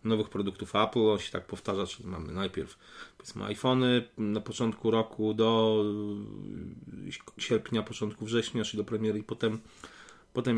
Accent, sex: native, male